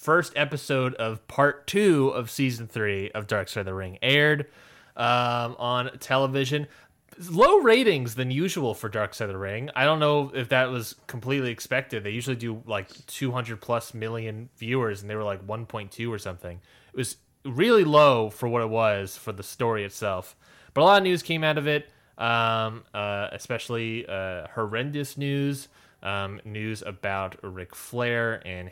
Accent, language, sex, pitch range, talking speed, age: American, English, male, 105-140 Hz, 175 wpm, 20-39